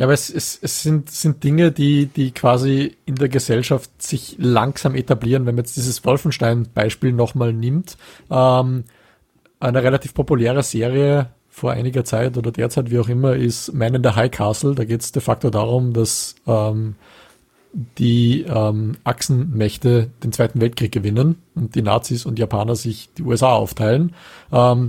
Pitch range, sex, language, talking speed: 115-135 Hz, male, German, 165 wpm